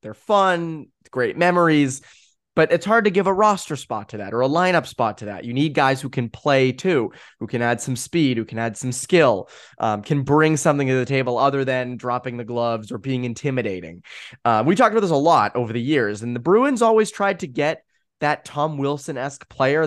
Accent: American